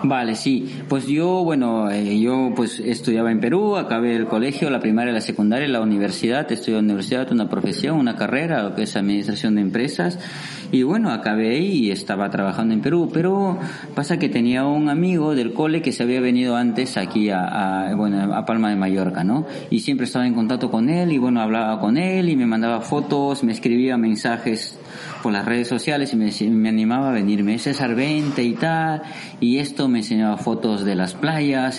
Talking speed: 200 wpm